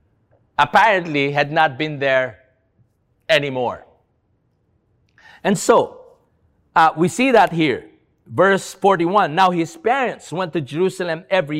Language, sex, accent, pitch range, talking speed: English, male, Filipino, 145-195 Hz, 115 wpm